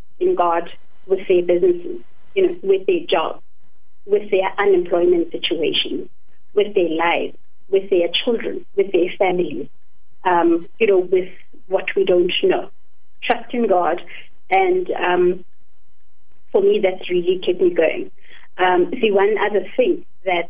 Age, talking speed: 30-49, 145 wpm